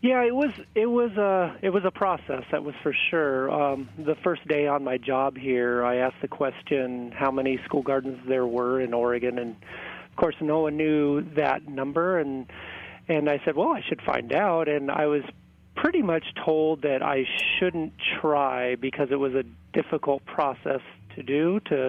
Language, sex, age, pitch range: English, male, 30-49, 125-150 Hz